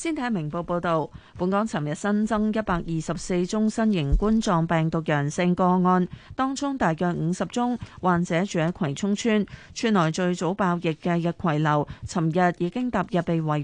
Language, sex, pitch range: Chinese, female, 165-210 Hz